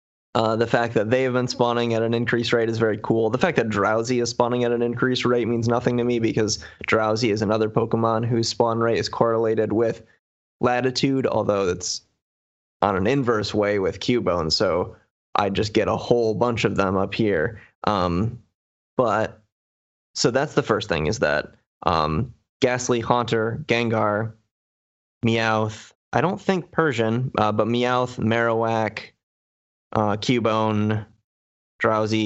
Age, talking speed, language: 20-39, 160 wpm, English